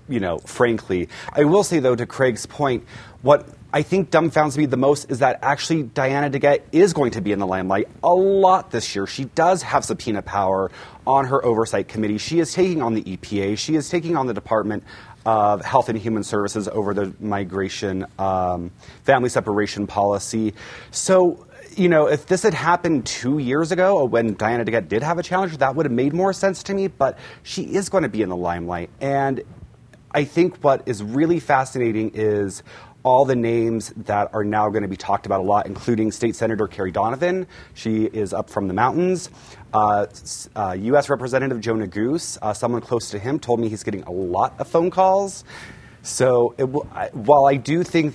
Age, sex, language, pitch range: 30-49, male, English, 105-150 Hz